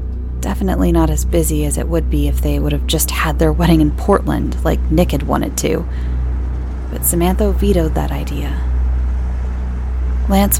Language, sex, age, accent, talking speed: English, female, 30-49, American, 165 wpm